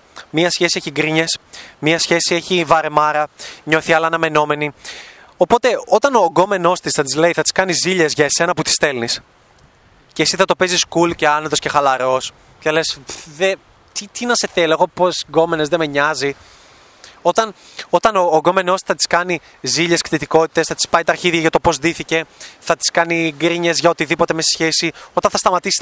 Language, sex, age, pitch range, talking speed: Greek, male, 20-39, 150-185 Hz, 190 wpm